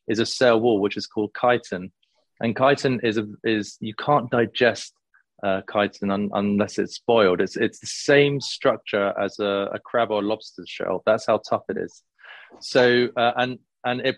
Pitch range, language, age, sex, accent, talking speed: 105-120 Hz, English, 30-49, male, British, 190 wpm